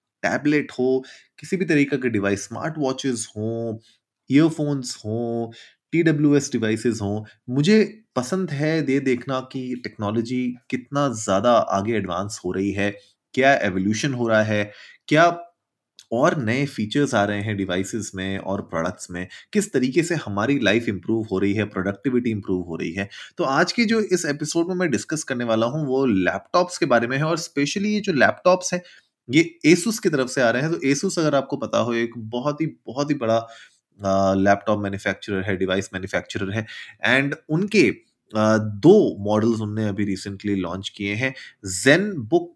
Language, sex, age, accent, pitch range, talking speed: Hindi, male, 20-39, native, 105-155 Hz, 175 wpm